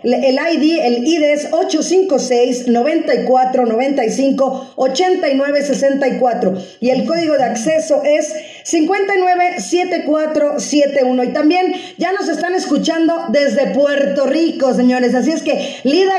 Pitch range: 250-315 Hz